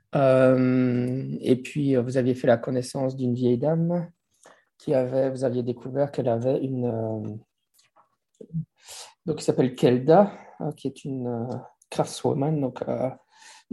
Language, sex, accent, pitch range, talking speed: English, male, French, 120-145 Hz, 140 wpm